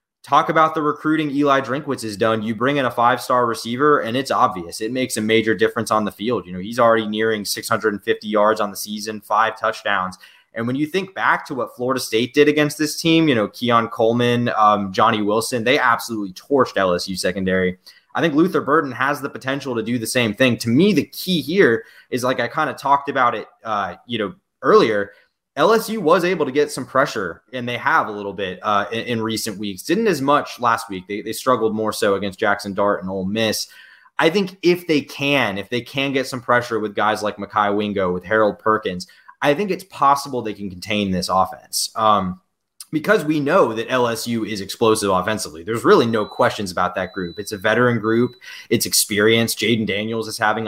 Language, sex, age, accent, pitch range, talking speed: English, male, 20-39, American, 105-130 Hz, 210 wpm